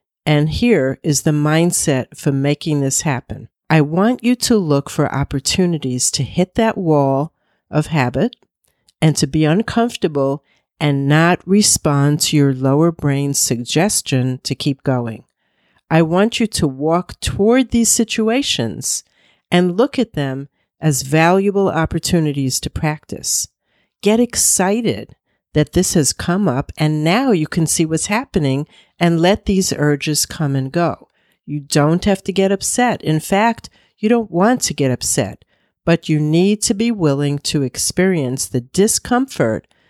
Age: 50-69